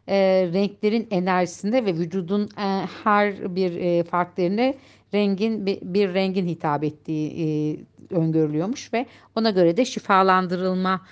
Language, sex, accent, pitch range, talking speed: Turkish, female, native, 170-215 Hz, 125 wpm